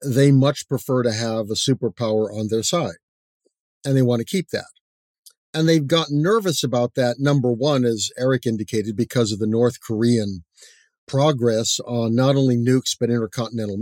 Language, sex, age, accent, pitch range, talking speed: English, male, 50-69, American, 115-145 Hz, 170 wpm